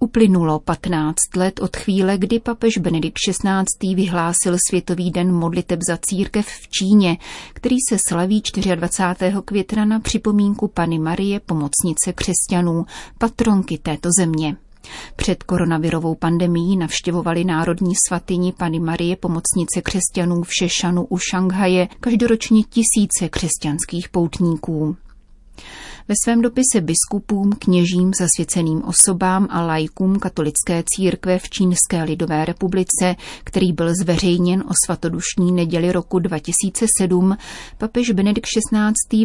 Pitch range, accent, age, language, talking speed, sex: 170-195 Hz, native, 30-49, Czech, 115 wpm, female